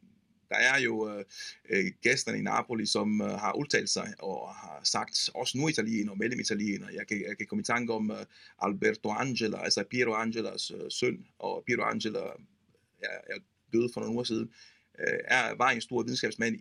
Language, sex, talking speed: Danish, male, 190 wpm